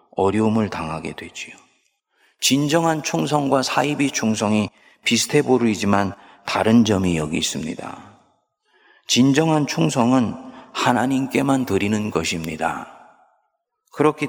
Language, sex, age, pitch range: Korean, male, 40-59, 95-145 Hz